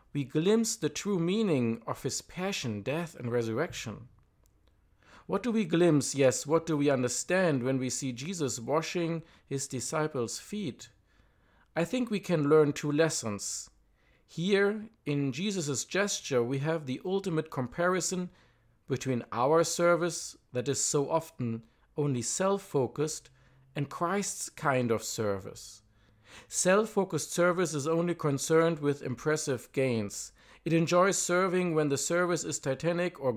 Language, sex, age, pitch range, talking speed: English, male, 50-69, 125-175 Hz, 135 wpm